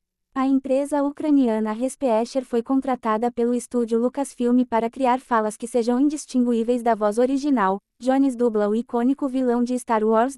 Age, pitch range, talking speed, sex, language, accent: 20-39, 235-275 Hz, 150 wpm, female, Portuguese, Brazilian